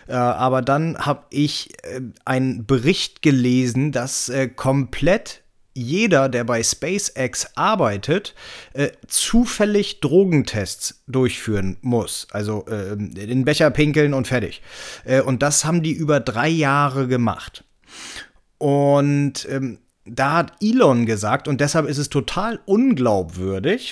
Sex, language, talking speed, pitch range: male, German, 110 wpm, 120-175 Hz